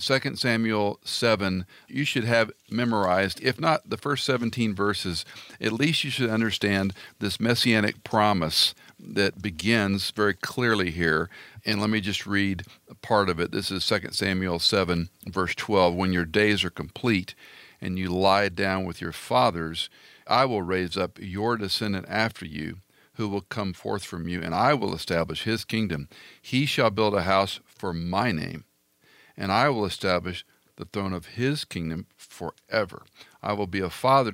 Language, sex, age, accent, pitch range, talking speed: English, male, 50-69, American, 90-115 Hz, 170 wpm